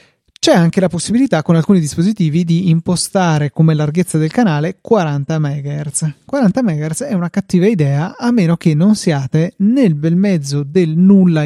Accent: native